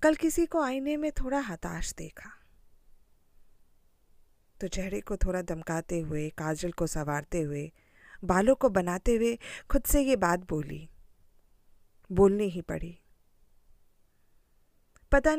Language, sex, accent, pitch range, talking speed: Hindi, female, native, 155-220 Hz, 120 wpm